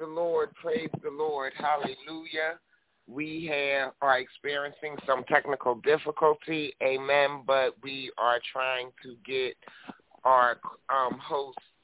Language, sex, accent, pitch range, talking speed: English, male, American, 135-160 Hz, 115 wpm